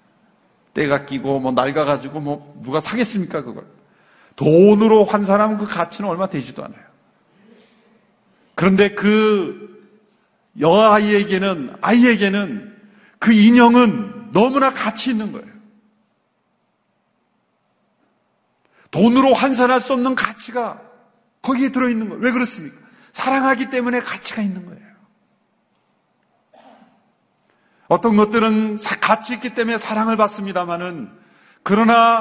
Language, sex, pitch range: Korean, male, 185-230 Hz